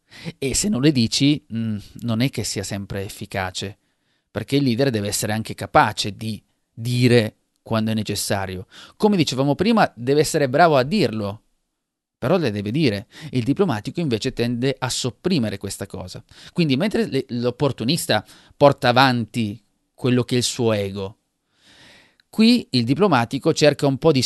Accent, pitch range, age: native, 110-140 Hz, 30-49